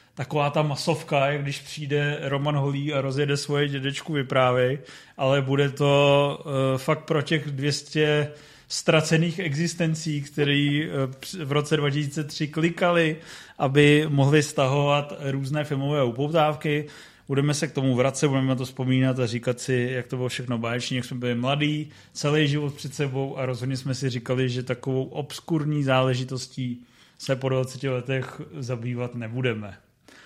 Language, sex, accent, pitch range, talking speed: Czech, male, native, 130-145 Hz, 145 wpm